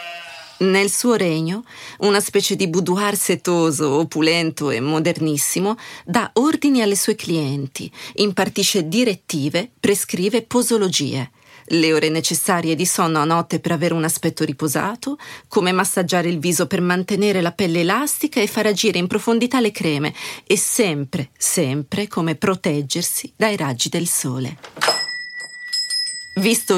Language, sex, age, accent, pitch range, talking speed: Italian, female, 40-59, native, 165-220 Hz, 130 wpm